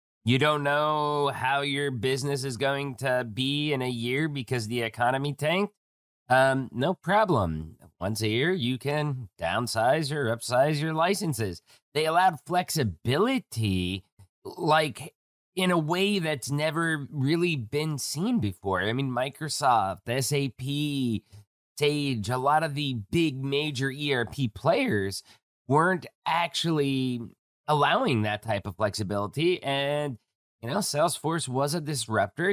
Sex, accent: male, American